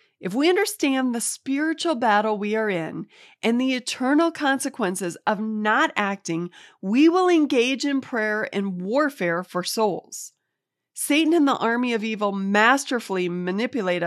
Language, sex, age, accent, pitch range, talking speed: English, female, 30-49, American, 195-265 Hz, 140 wpm